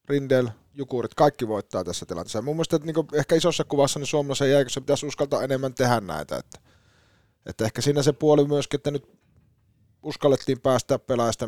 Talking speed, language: 175 wpm, Finnish